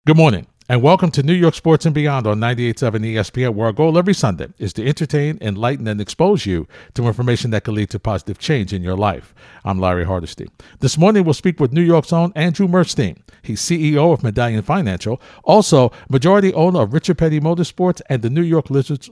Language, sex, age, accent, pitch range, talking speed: English, male, 50-69, American, 120-170 Hz, 205 wpm